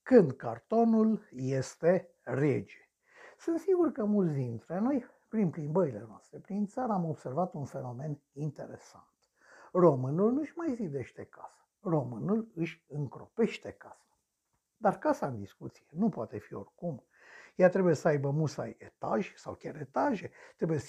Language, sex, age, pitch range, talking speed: Romanian, male, 60-79, 150-215 Hz, 140 wpm